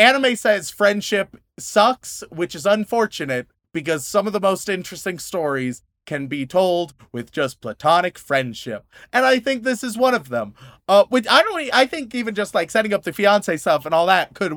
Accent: American